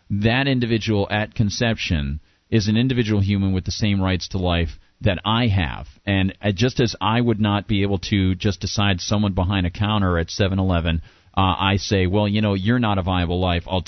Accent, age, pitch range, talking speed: American, 40-59, 95-110 Hz, 200 wpm